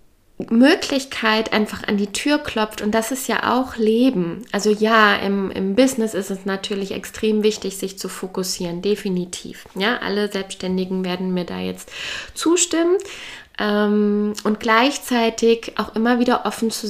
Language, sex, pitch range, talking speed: German, female, 185-225 Hz, 150 wpm